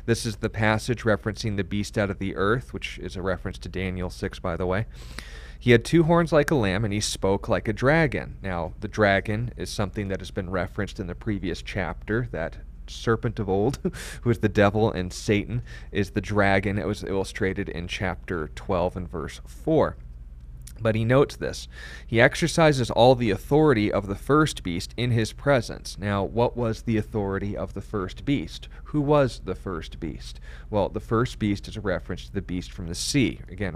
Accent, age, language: American, 30-49, English